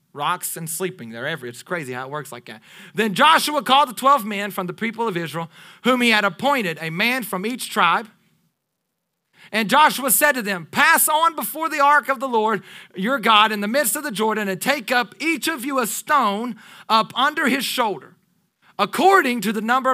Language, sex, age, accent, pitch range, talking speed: English, male, 40-59, American, 170-255 Hz, 210 wpm